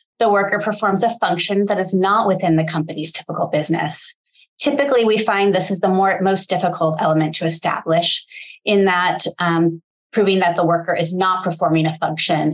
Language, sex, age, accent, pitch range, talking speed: English, female, 30-49, American, 160-200 Hz, 175 wpm